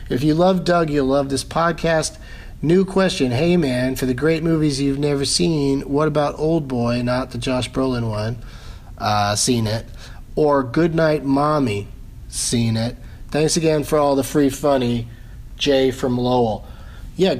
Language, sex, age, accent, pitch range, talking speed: English, male, 40-59, American, 110-150 Hz, 160 wpm